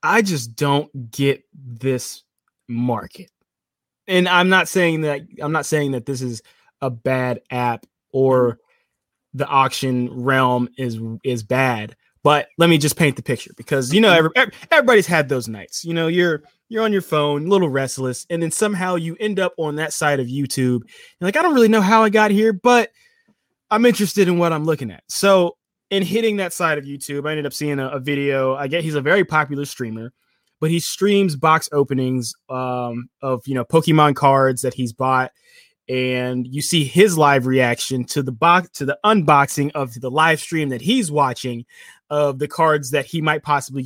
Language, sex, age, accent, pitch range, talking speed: English, male, 20-39, American, 130-170 Hz, 190 wpm